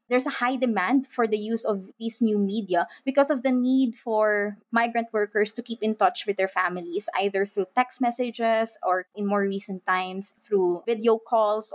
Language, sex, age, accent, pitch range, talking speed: English, female, 20-39, Filipino, 200-250 Hz, 190 wpm